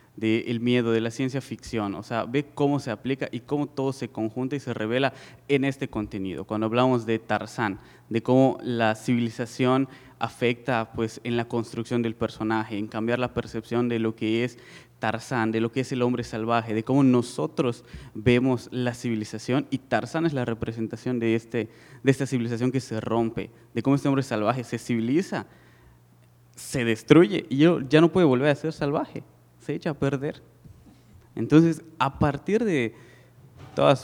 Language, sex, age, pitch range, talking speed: Spanish, male, 20-39, 110-130 Hz, 170 wpm